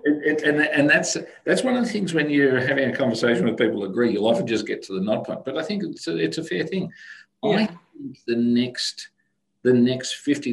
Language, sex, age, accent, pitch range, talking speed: English, male, 50-69, Australian, 95-130 Hz, 240 wpm